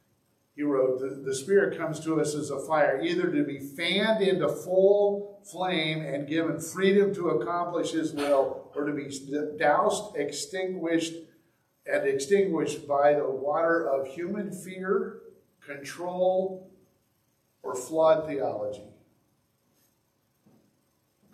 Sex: male